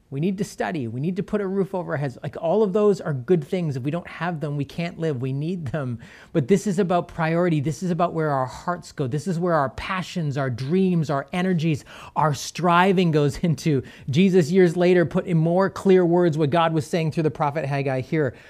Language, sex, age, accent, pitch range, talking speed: English, male, 30-49, American, 140-180 Hz, 235 wpm